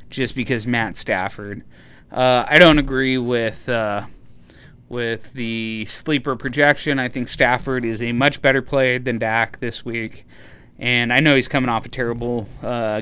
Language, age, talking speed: English, 20-39, 160 wpm